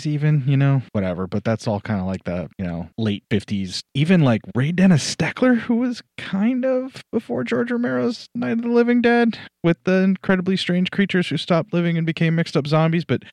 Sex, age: male, 30-49